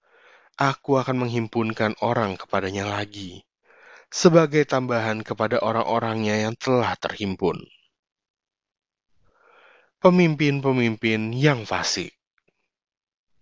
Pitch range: 105-145 Hz